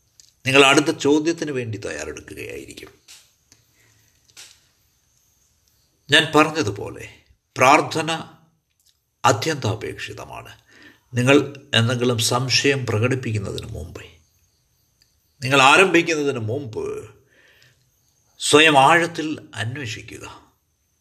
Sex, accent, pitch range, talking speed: male, native, 105-155 Hz, 55 wpm